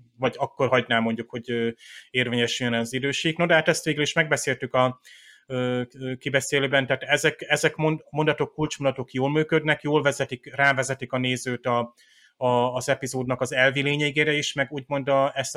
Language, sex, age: Hungarian, male, 30-49